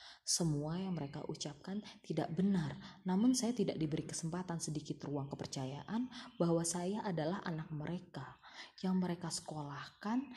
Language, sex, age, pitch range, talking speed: Indonesian, female, 20-39, 155-195 Hz, 125 wpm